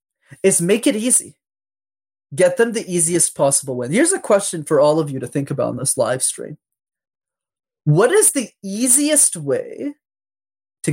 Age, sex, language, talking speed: 20-39, male, English, 165 wpm